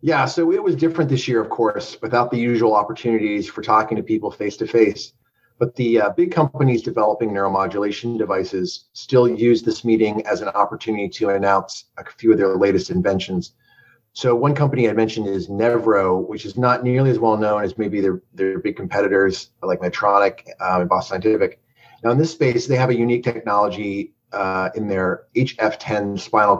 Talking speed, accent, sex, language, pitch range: 180 wpm, American, male, English, 105-125 Hz